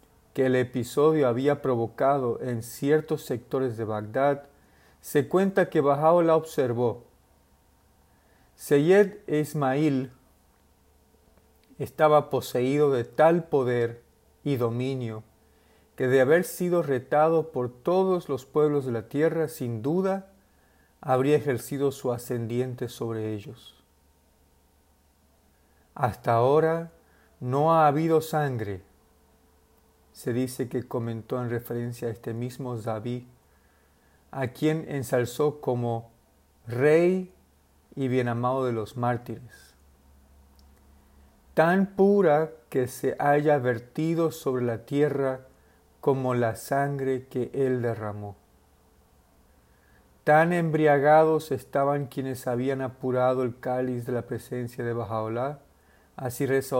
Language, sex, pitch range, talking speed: Spanish, male, 95-140 Hz, 105 wpm